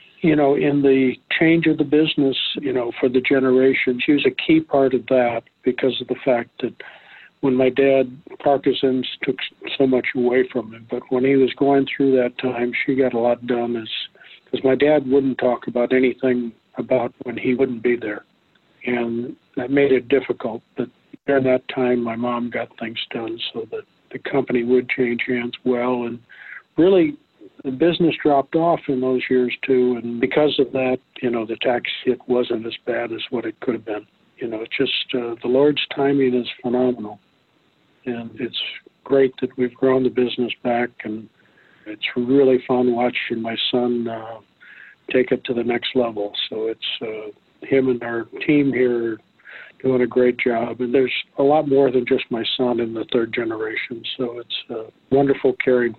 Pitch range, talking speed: 120-135 Hz, 190 wpm